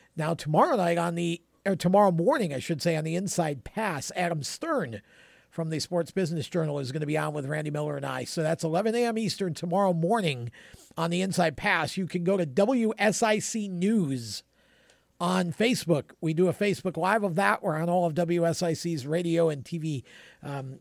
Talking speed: 190 wpm